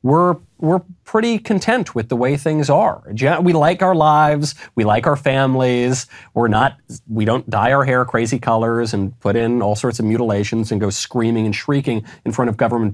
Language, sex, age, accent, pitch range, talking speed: English, male, 30-49, American, 110-150 Hz, 195 wpm